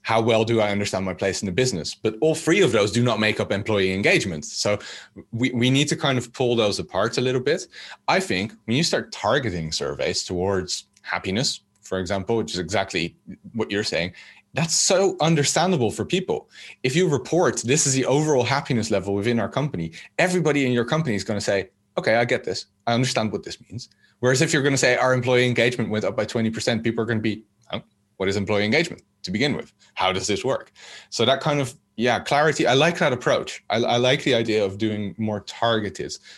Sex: male